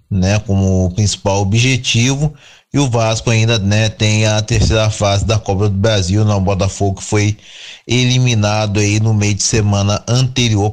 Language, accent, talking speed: Portuguese, Brazilian, 155 wpm